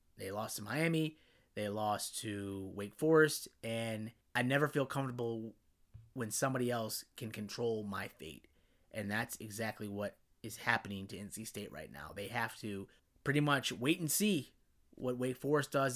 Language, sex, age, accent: English, male, 30-49, American